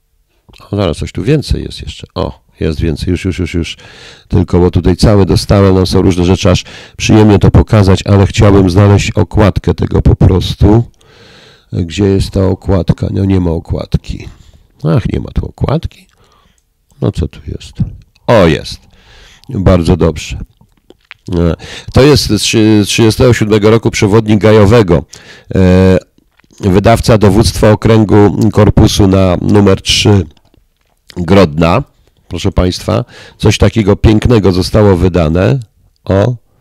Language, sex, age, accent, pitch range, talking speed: Polish, male, 50-69, native, 90-110 Hz, 125 wpm